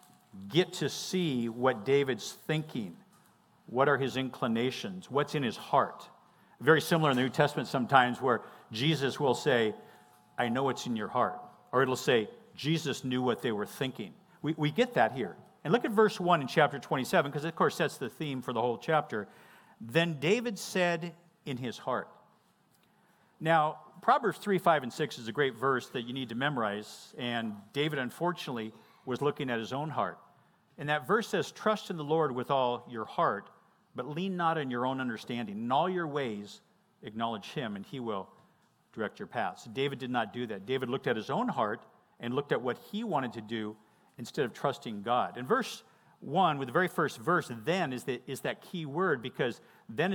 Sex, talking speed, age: male, 195 wpm, 50-69